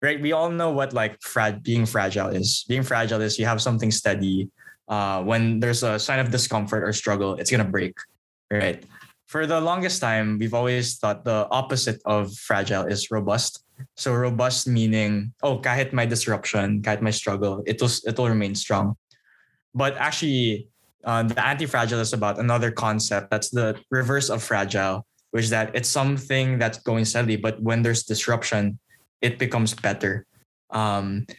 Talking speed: 165 wpm